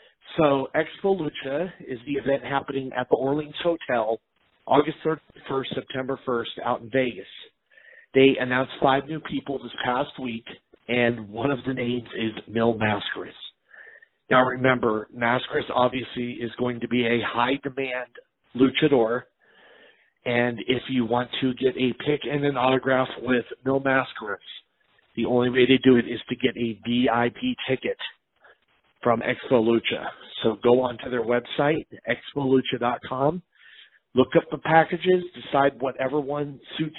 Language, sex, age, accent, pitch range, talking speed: English, male, 40-59, American, 120-145 Hz, 145 wpm